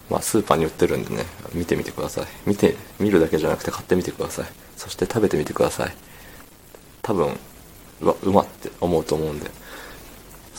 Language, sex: Japanese, male